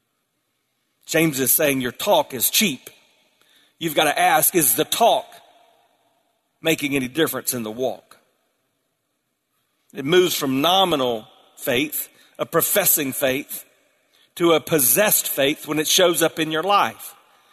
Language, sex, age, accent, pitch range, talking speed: English, male, 40-59, American, 145-200 Hz, 135 wpm